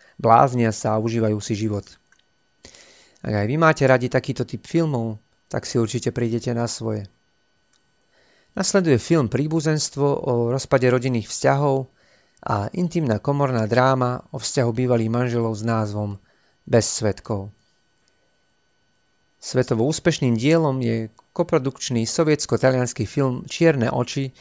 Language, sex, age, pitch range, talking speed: Slovak, male, 30-49, 115-140 Hz, 120 wpm